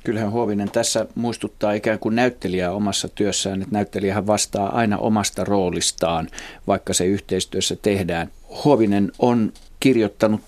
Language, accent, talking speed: Finnish, native, 125 wpm